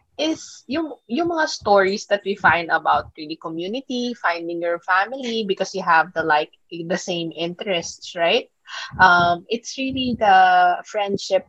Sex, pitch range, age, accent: female, 170-230 Hz, 20-39, native